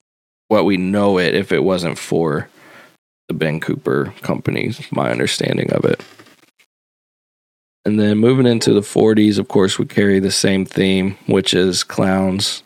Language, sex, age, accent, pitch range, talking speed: English, male, 20-39, American, 90-110 Hz, 150 wpm